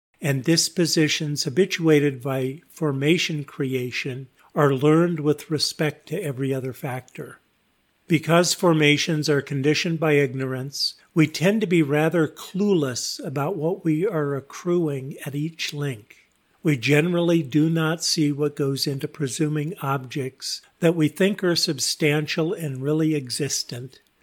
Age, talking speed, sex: 50-69, 130 wpm, male